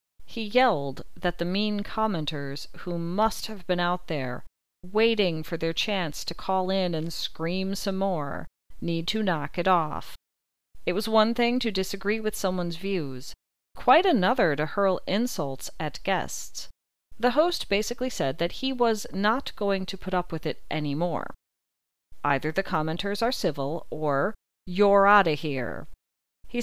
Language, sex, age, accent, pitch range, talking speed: English, female, 40-59, American, 150-205 Hz, 155 wpm